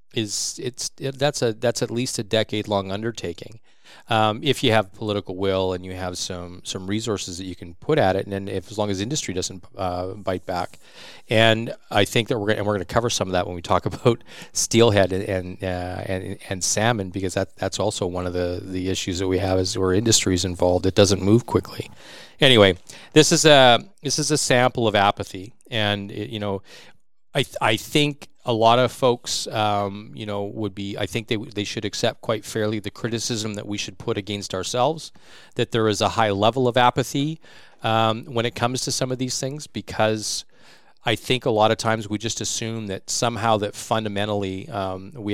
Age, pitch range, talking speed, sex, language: 40-59, 95-115 Hz, 215 wpm, male, English